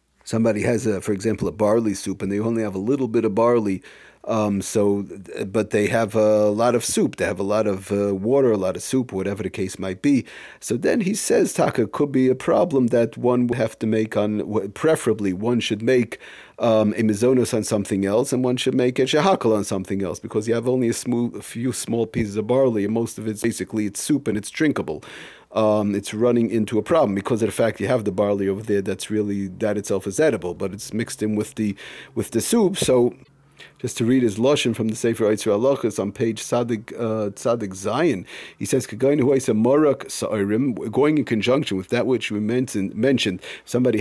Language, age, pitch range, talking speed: English, 40-59, 105-125 Hz, 215 wpm